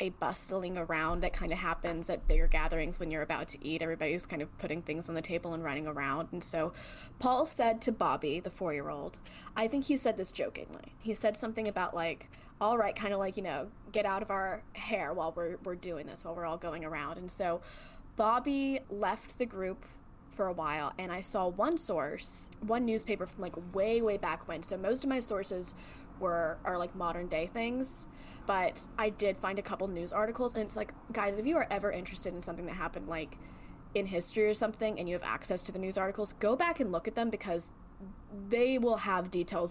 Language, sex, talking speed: English, female, 215 wpm